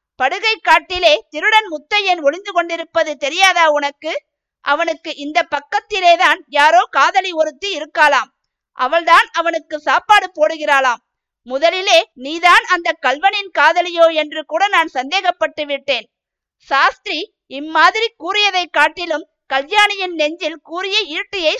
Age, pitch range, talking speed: 50-69, 295-365 Hz, 105 wpm